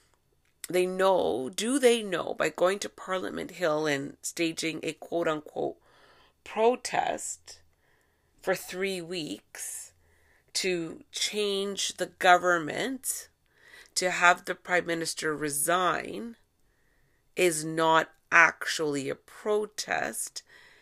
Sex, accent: female, American